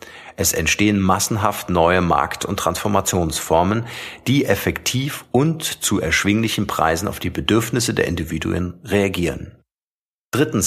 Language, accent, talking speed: German, German, 110 wpm